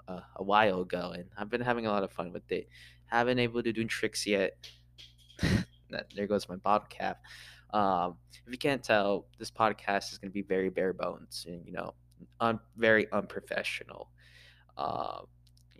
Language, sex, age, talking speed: English, male, 20-39, 175 wpm